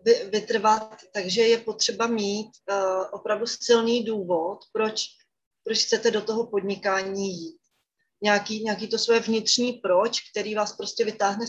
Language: Czech